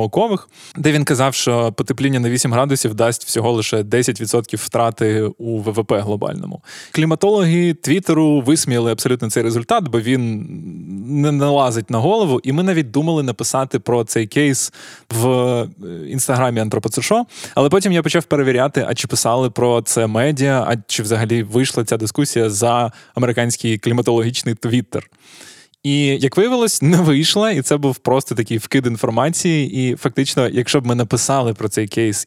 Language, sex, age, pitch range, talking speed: Ukrainian, male, 20-39, 115-140 Hz, 150 wpm